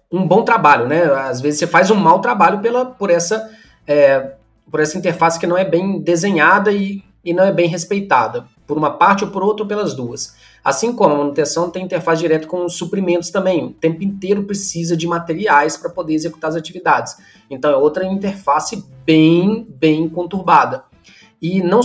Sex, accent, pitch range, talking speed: male, Brazilian, 160-205 Hz, 185 wpm